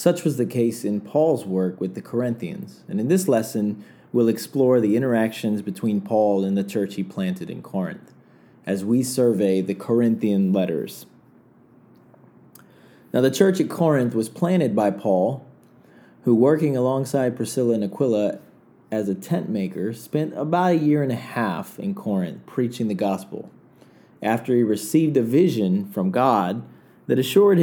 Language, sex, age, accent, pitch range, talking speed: English, male, 30-49, American, 110-155 Hz, 160 wpm